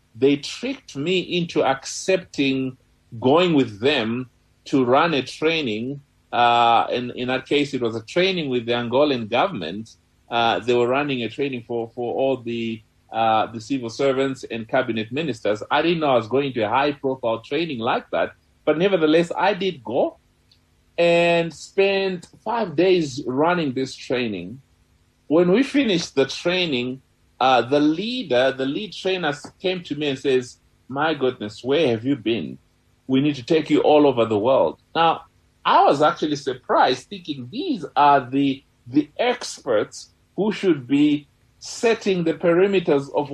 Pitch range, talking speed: 120-170 Hz, 160 wpm